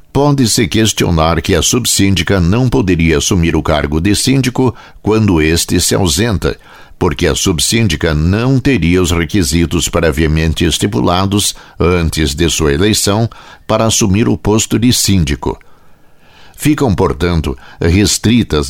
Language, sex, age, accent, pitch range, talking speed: Portuguese, male, 60-79, Brazilian, 80-110 Hz, 120 wpm